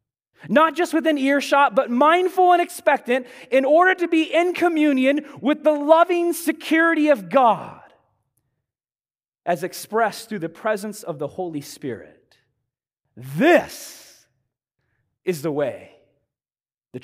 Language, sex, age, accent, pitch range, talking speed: English, male, 30-49, American, 240-330 Hz, 120 wpm